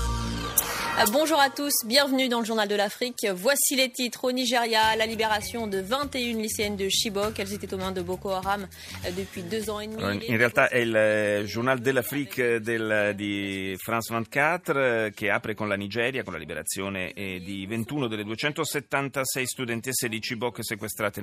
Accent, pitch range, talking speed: native, 105-150 Hz, 170 wpm